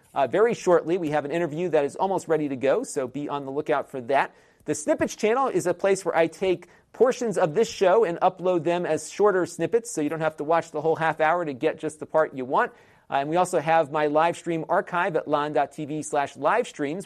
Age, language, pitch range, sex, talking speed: 40-59, English, 145-175 Hz, male, 245 wpm